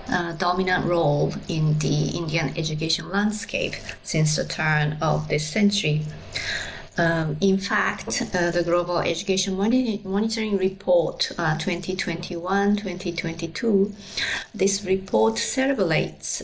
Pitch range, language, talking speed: 175-200 Hz, English, 100 wpm